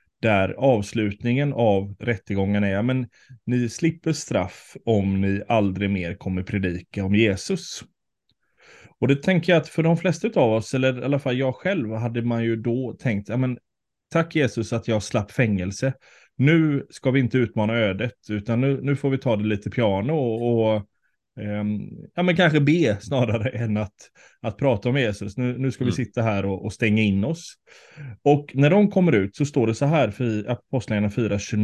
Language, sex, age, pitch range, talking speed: Swedish, male, 20-39, 105-140 Hz, 185 wpm